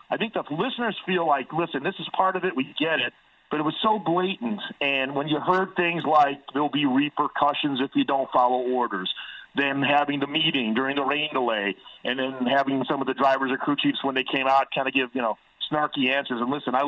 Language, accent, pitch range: English, American, 130-170 Hz